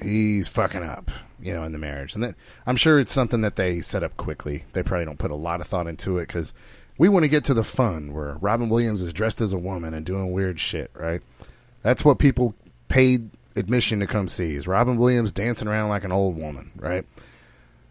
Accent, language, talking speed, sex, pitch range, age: American, English, 230 wpm, male, 85-130 Hz, 30-49